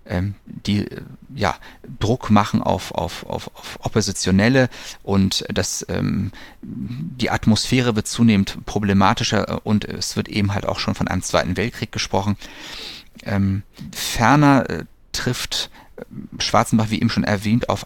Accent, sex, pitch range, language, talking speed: German, male, 100-120 Hz, English, 130 wpm